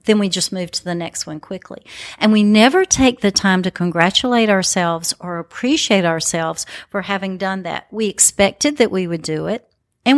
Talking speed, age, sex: 195 wpm, 50-69, female